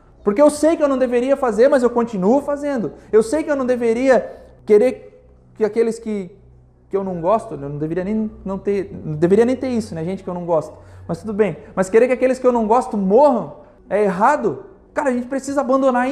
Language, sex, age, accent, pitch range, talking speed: Portuguese, male, 20-39, Brazilian, 200-270 Hz, 220 wpm